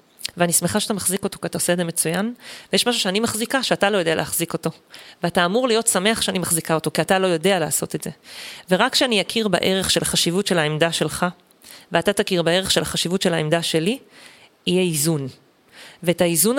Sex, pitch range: female, 165-205 Hz